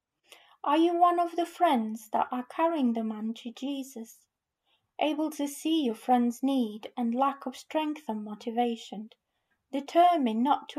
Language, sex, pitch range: English, female, 230-285 Hz